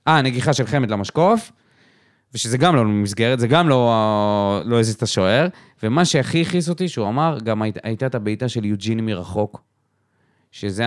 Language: Hebrew